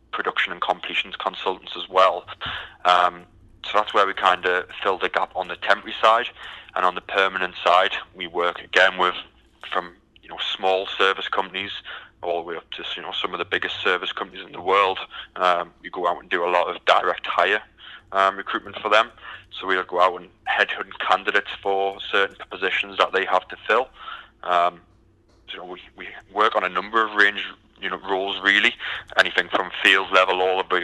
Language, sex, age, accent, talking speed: English, male, 20-39, British, 205 wpm